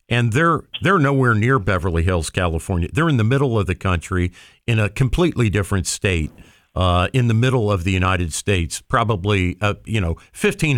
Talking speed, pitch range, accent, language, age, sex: 185 wpm, 90-115 Hz, American, English, 50-69, male